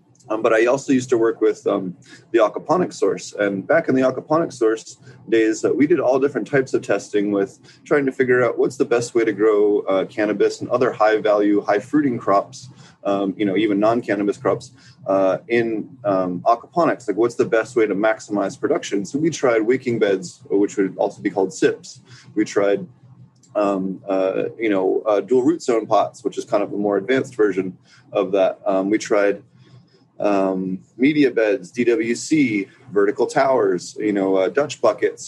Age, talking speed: 20-39, 190 wpm